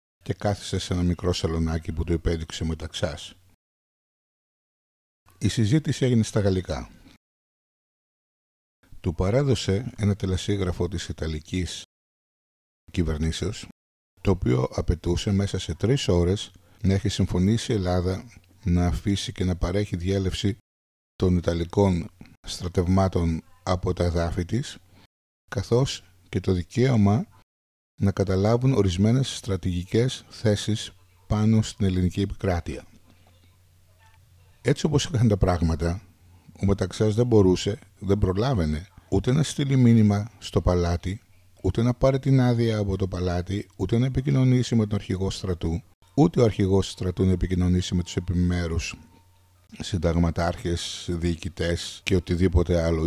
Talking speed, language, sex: 120 wpm, Greek, male